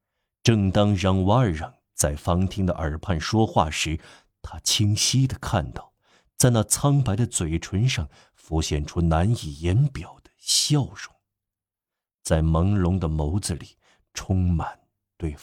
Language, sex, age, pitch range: Chinese, male, 50-69, 80-105 Hz